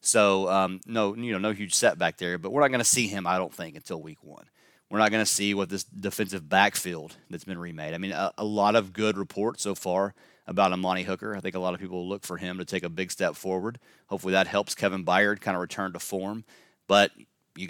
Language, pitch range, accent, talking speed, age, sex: English, 90-110 Hz, American, 250 wpm, 30-49, male